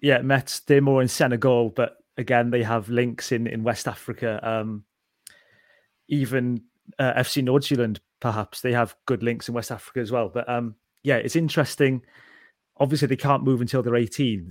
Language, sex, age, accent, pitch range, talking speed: English, male, 30-49, British, 120-130 Hz, 175 wpm